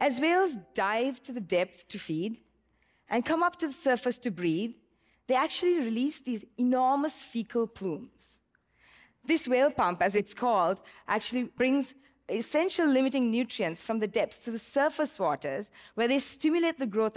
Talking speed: 160 wpm